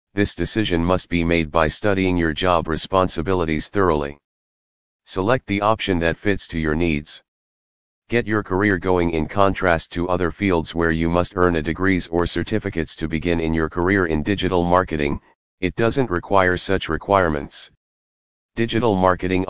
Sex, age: male, 40-59